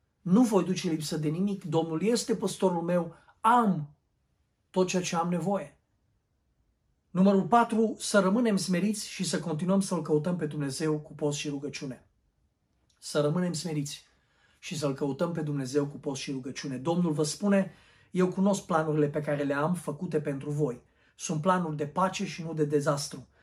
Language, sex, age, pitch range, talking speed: Romanian, male, 40-59, 145-180 Hz, 165 wpm